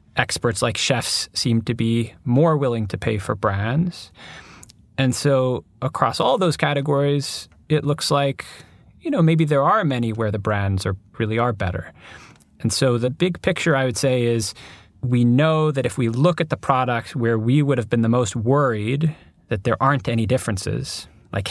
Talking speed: 185 wpm